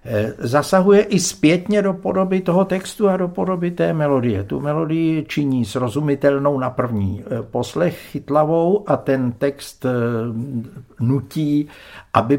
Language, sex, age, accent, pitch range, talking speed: Czech, male, 60-79, native, 110-145 Hz, 120 wpm